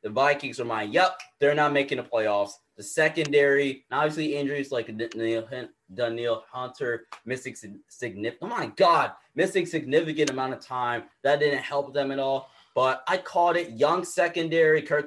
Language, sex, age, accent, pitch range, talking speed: English, male, 20-39, American, 120-165 Hz, 160 wpm